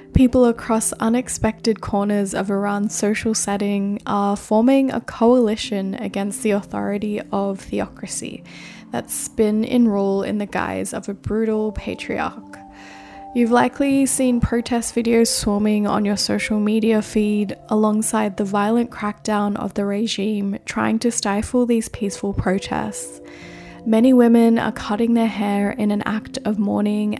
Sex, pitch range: female, 200-225 Hz